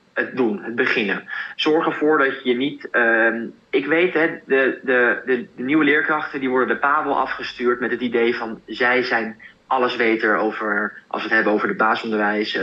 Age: 20-39